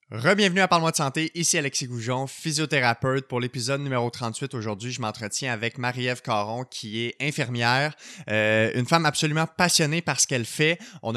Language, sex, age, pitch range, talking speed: French, male, 20-39, 110-140 Hz, 170 wpm